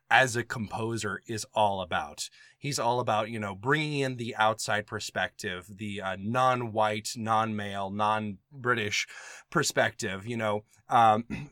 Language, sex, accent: English, male, American